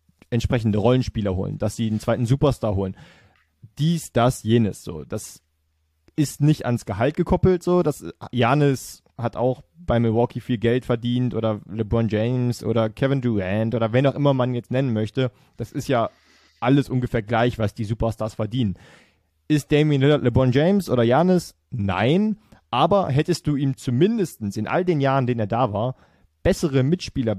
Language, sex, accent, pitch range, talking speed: German, male, German, 110-140 Hz, 165 wpm